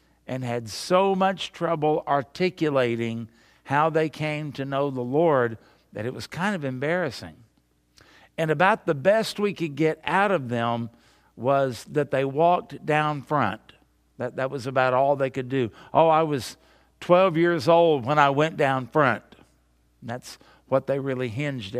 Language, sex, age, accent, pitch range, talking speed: English, male, 60-79, American, 125-170 Hz, 165 wpm